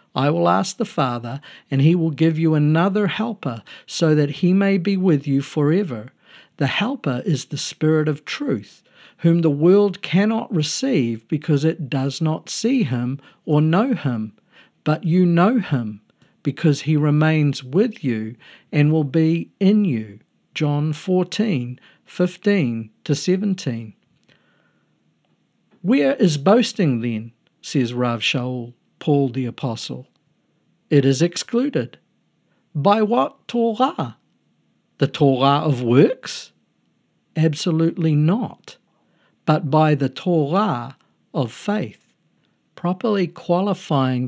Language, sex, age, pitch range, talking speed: English, male, 50-69, 130-180 Hz, 120 wpm